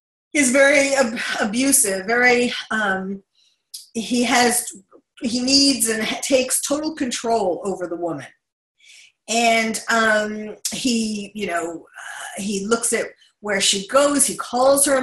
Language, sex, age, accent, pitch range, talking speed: English, female, 40-59, American, 205-255 Hz, 130 wpm